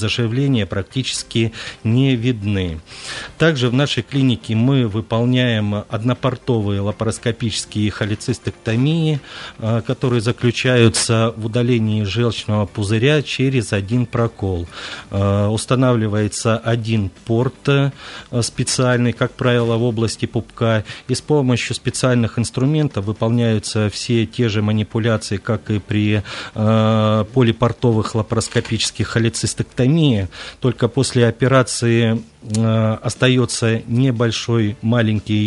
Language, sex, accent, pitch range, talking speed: Russian, male, native, 105-120 Hz, 90 wpm